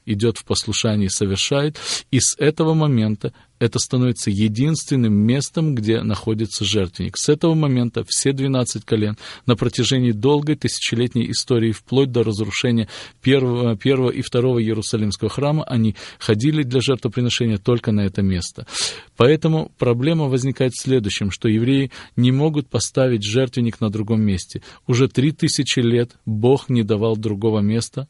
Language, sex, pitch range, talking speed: Russian, male, 110-130 Hz, 140 wpm